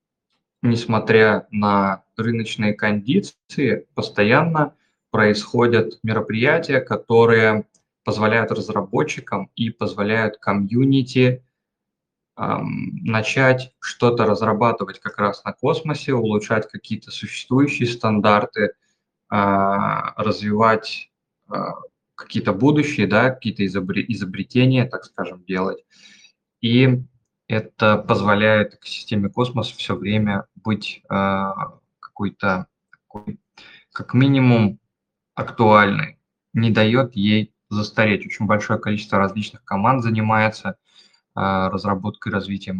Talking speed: 90 wpm